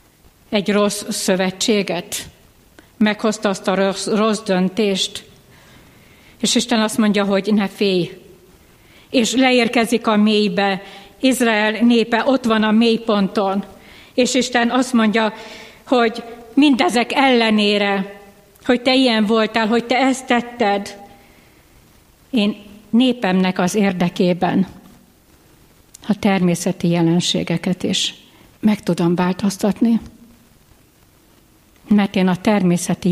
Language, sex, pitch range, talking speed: Hungarian, female, 190-230 Hz, 100 wpm